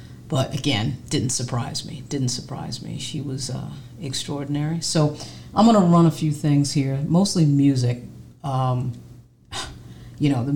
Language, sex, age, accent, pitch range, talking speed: English, female, 40-59, American, 130-165 Hz, 150 wpm